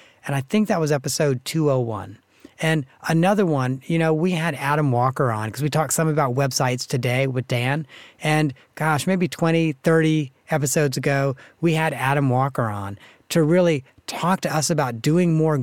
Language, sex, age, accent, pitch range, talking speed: English, male, 40-59, American, 130-160 Hz, 175 wpm